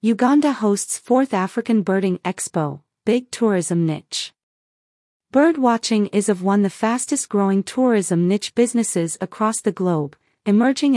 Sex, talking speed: female, 120 wpm